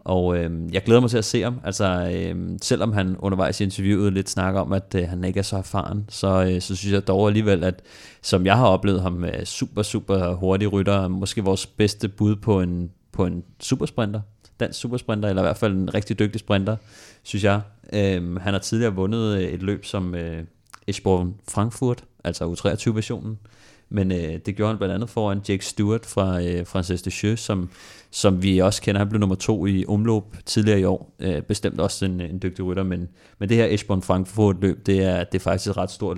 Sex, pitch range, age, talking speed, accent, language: male, 95-105 Hz, 30-49, 215 wpm, native, Danish